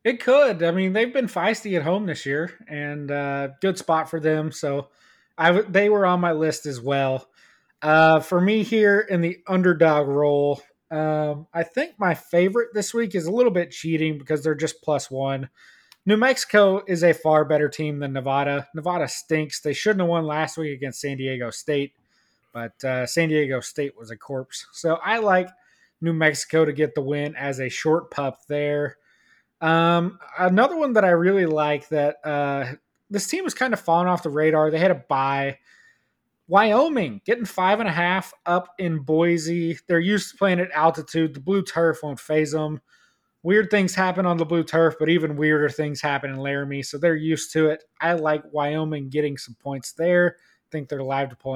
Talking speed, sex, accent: 200 wpm, male, American